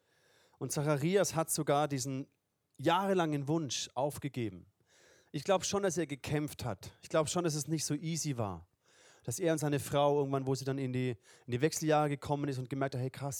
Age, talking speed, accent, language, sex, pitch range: 30-49, 200 wpm, German, German, male, 130-160 Hz